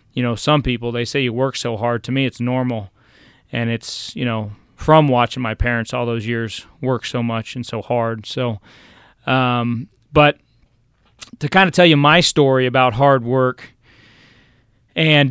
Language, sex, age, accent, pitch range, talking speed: English, male, 30-49, American, 120-140 Hz, 175 wpm